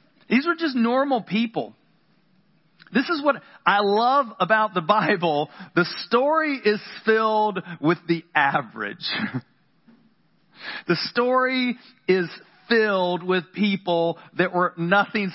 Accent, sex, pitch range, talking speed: American, male, 175-225 Hz, 115 wpm